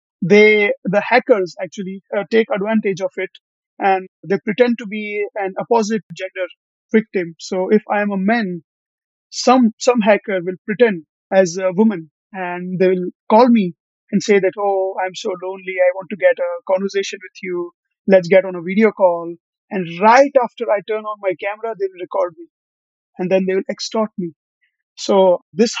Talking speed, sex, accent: 180 wpm, male, Indian